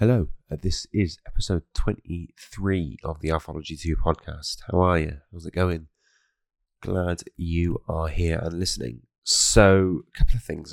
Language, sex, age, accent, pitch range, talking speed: English, male, 20-39, British, 80-95 Hz, 155 wpm